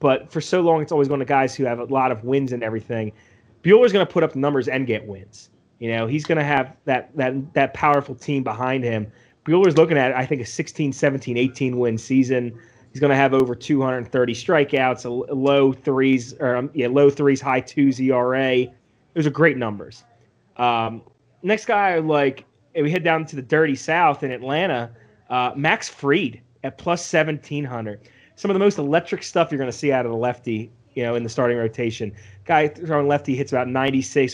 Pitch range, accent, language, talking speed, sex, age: 120-145 Hz, American, English, 200 wpm, male, 30-49